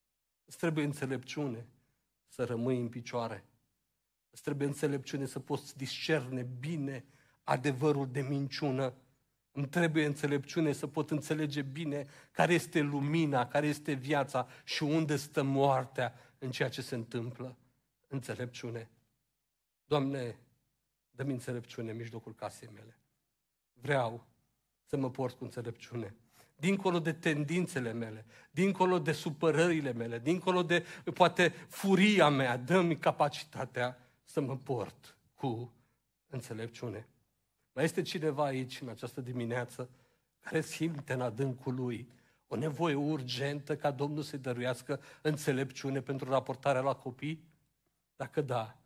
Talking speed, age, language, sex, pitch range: 125 wpm, 50-69, Romanian, male, 125-150 Hz